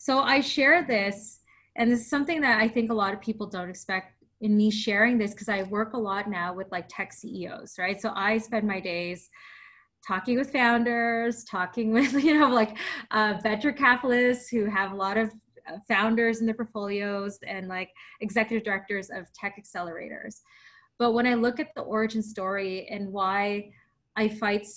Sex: female